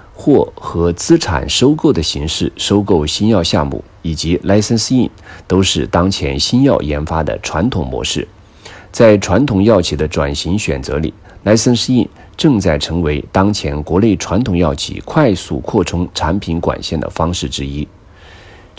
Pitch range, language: 80-105 Hz, Chinese